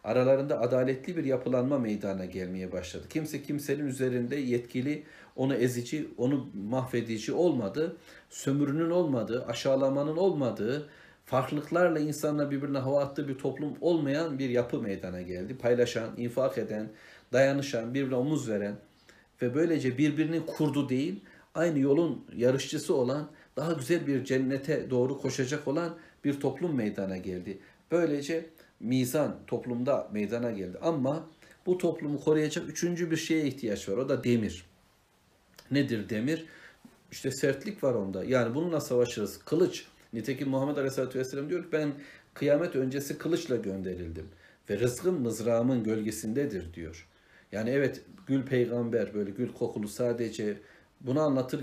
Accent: native